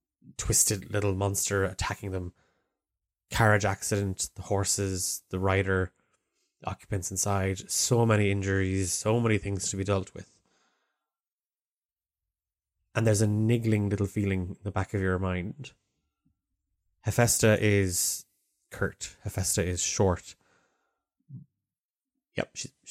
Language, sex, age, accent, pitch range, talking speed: English, male, 20-39, Irish, 95-105 Hz, 115 wpm